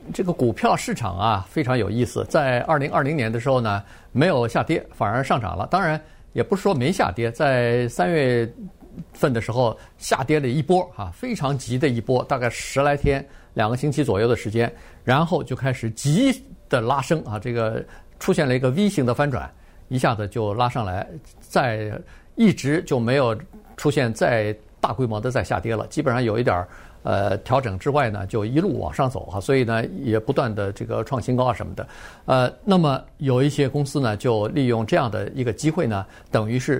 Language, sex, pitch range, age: Chinese, male, 115-145 Hz, 50-69